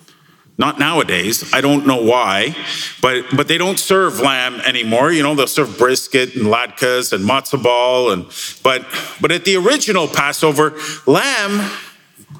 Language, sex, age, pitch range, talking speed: English, male, 40-59, 140-180 Hz, 150 wpm